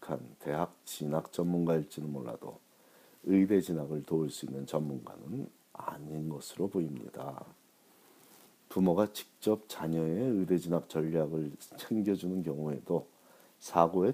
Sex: male